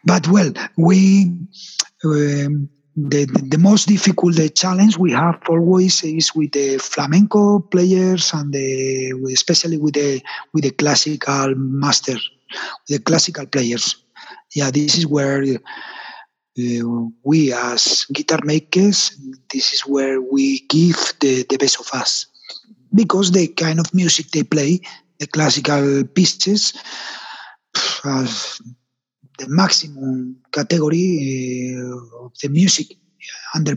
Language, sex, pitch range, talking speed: English, male, 135-170 Hz, 125 wpm